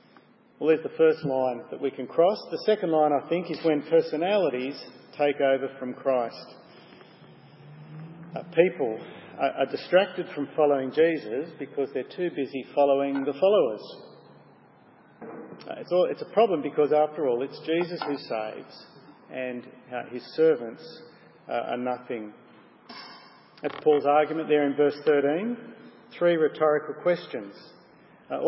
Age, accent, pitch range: 50-69, Australian, 140-180 Hz